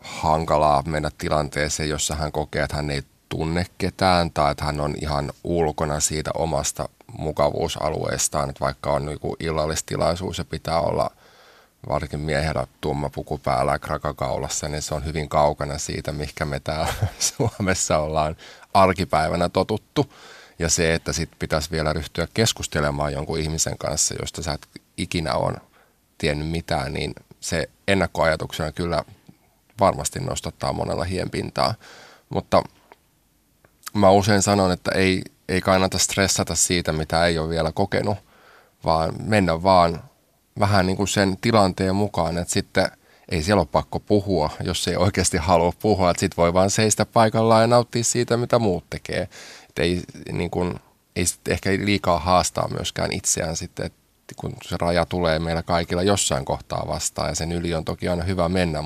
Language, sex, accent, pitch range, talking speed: Finnish, male, native, 75-95 Hz, 155 wpm